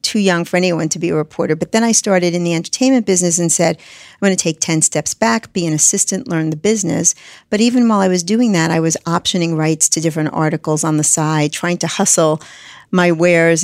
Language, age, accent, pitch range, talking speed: English, 50-69, American, 160-195 Hz, 235 wpm